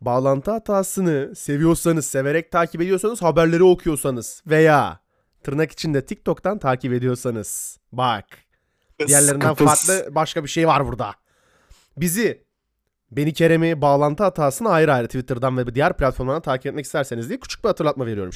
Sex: male